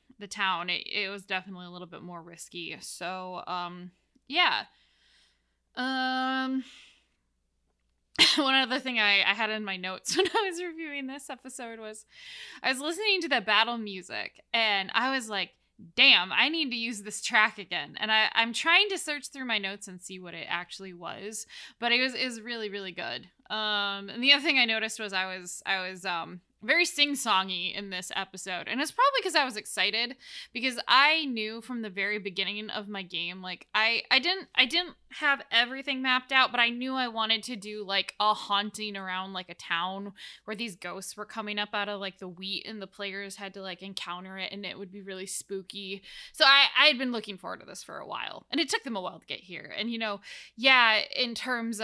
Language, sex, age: English, female, 10-29